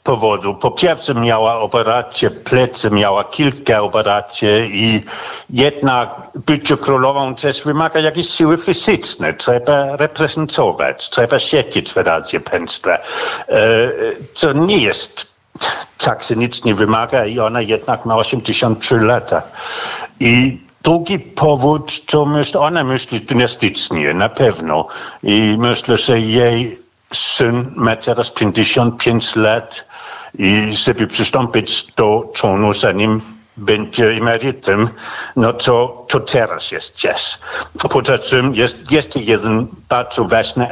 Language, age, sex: Polish, 60-79, male